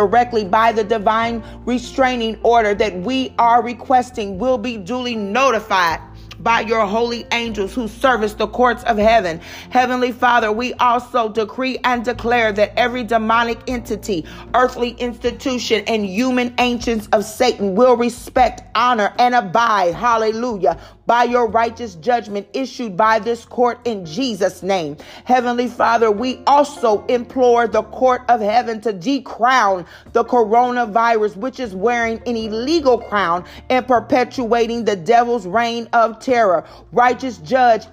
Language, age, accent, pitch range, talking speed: English, 40-59, American, 225-250 Hz, 140 wpm